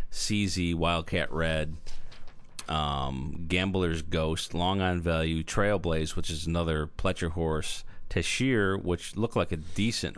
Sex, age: male, 40-59